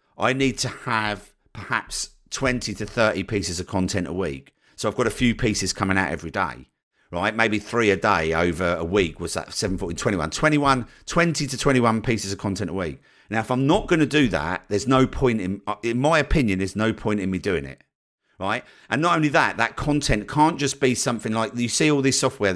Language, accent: English, British